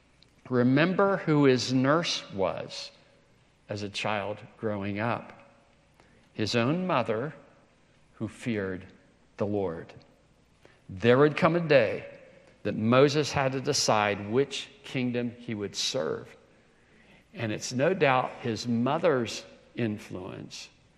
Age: 60-79